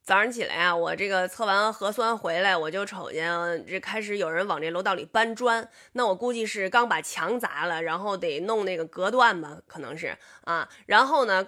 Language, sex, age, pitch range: Chinese, female, 20-39, 185-245 Hz